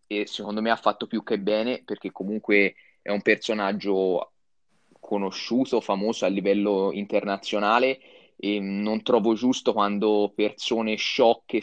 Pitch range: 105-130 Hz